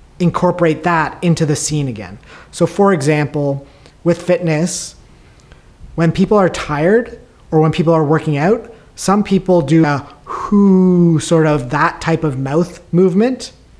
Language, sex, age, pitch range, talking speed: English, male, 30-49, 155-185 Hz, 145 wpm